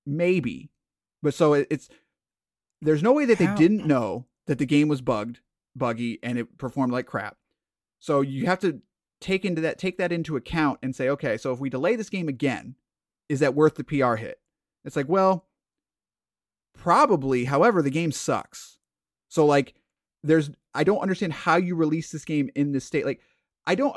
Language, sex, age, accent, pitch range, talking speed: English, male, 30-49, American, 125-165 Hz, 185 wpm